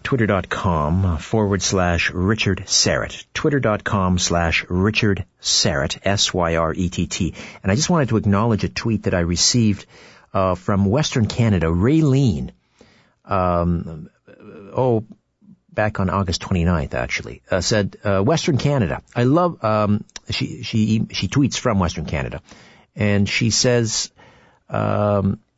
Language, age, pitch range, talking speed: English, 50-69, 95-120 Hz, 120 wpm